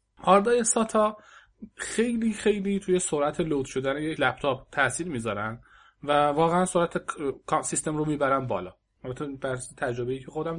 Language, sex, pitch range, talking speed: Persian, male, 130-170 Hz, 135 wpm